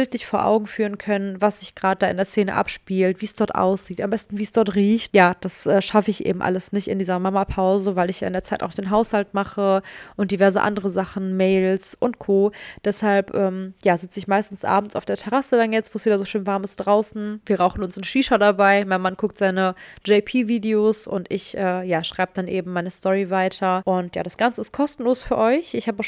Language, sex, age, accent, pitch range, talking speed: German, female, 20-39, German, 190-220 Hz, 230 wpm